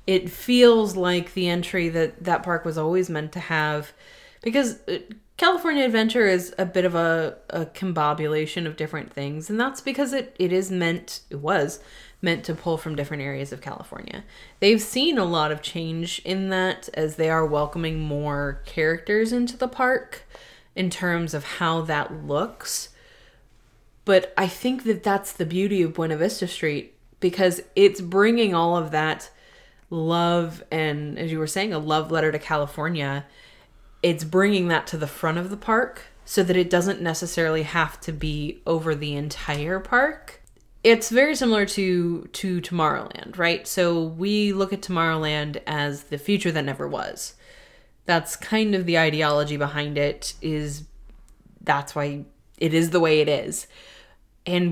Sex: female